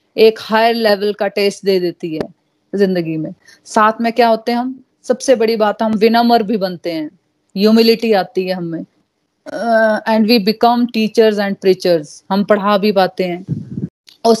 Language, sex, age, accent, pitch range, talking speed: Hindi, female, 30-49, native, 195-230 Hz, 135 wpm